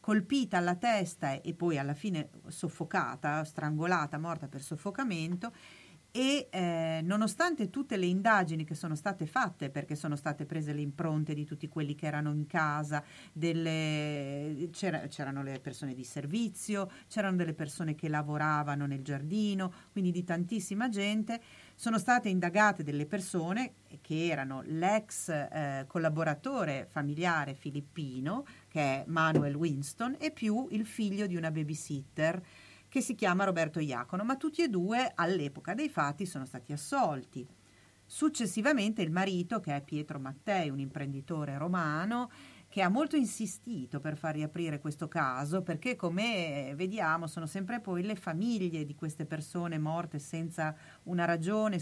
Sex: female